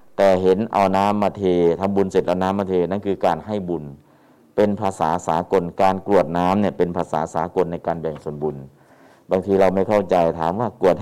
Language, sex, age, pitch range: Thai, male, 60-79, 85-100 Hz